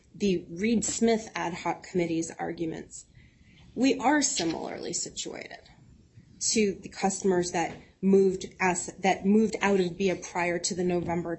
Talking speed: 135 wpm